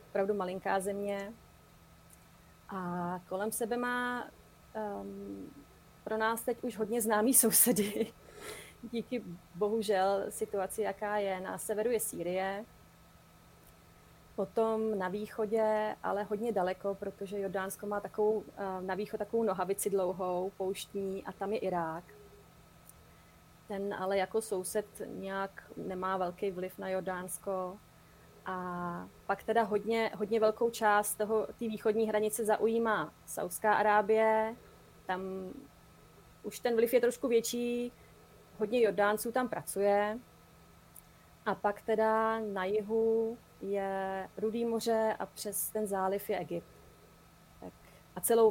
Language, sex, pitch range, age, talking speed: Czech, female, 185-220 Hz, 30-49, 115 wpm